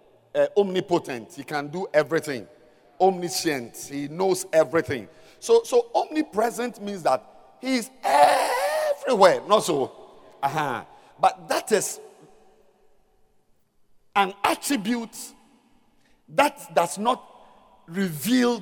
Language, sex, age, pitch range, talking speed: English, male, 50-69, 190-295 Hz, 100 wpm